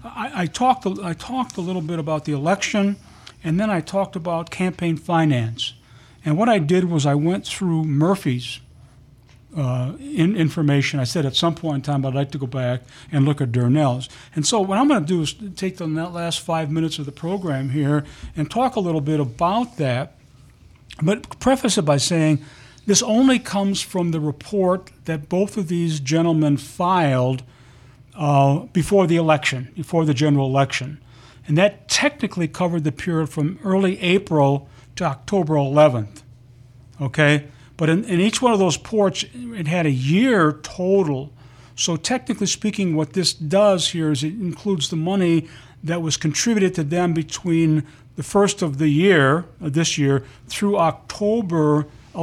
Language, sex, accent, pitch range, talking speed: English, male, American, 140-185 Hz, 170 wpm